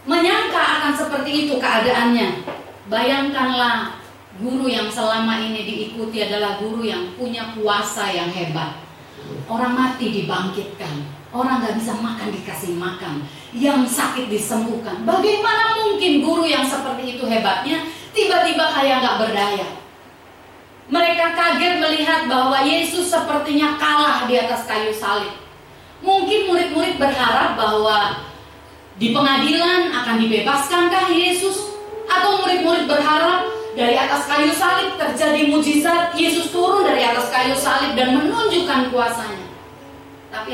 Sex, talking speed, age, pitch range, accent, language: female, 120 wpm, 30-49, 220-320 Hz, native, Indonesian